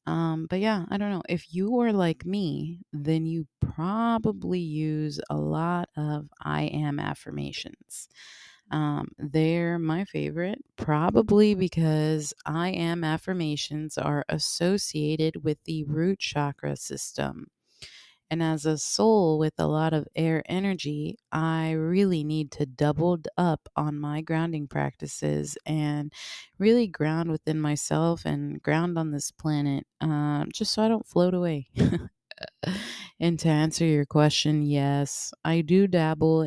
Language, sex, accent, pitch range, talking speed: English, female, American, 150-175 Hz, 135 wpm